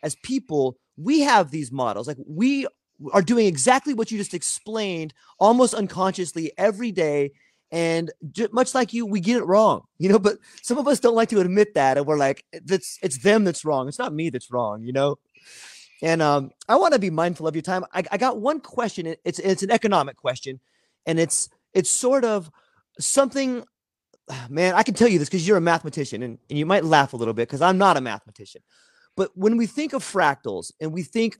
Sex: male